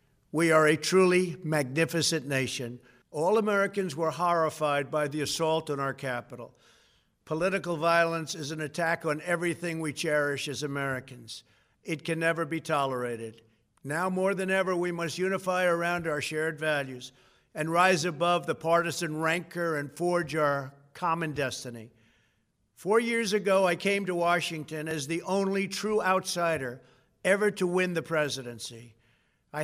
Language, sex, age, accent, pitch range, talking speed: English, male, 50-69, American, 150-185 Hz, 145 wpm